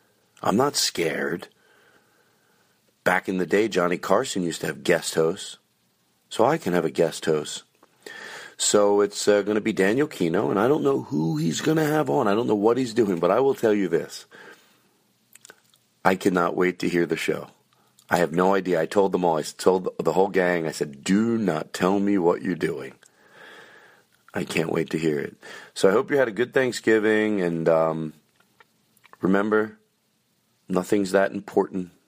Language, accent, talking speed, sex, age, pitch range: English, American, 185 wpm, male, 40-59, 90-135 Hz